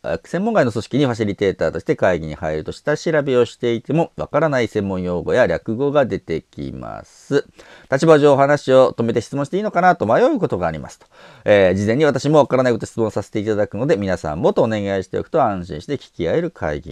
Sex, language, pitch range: male, Japanese, 85-140 Hz